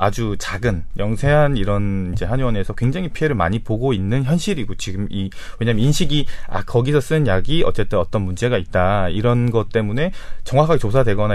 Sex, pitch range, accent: male, 95-135 Hz, native